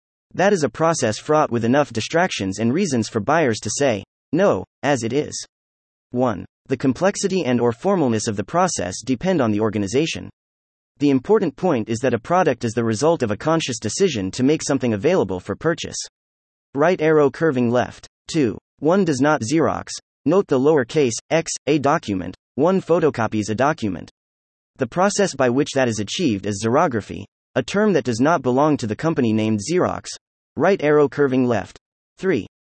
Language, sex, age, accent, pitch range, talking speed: English, male, 30-49, American, 105-155 Hz, 175 wpm